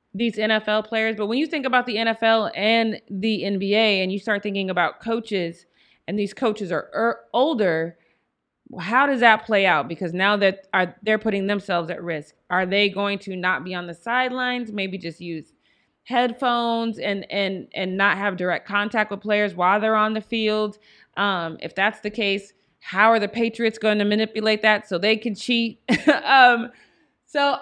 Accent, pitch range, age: American, 185-225 Hz, 30-49